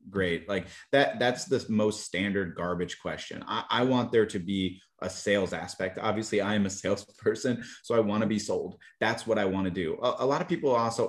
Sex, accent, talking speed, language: male, American, 220 wpm, English